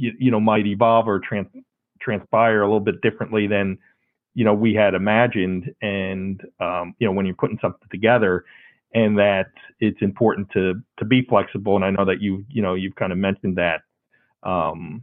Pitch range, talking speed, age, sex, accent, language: 100-130 Hz, 190 wpm, 40-59, male, American, English